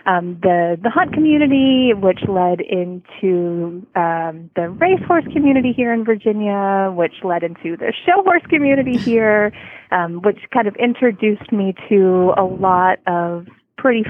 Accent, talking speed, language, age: American, 145 wpm, English, 30-49